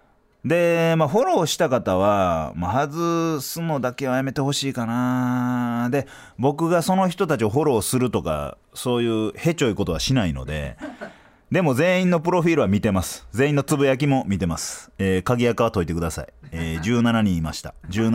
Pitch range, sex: 90-135 Hz, male